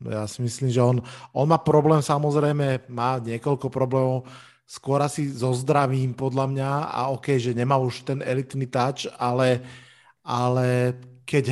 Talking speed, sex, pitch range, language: 150 wpm, male, 125-150 Hz, Slovak